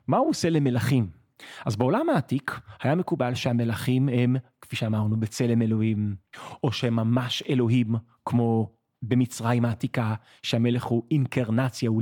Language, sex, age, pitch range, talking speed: Hebrew, male, 30-49, 120-165 Hz, 130 wpm